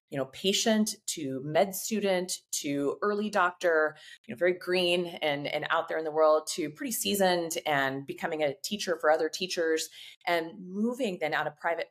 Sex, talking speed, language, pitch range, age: female, 180 wpm, English, 145-195 Hz, 30-49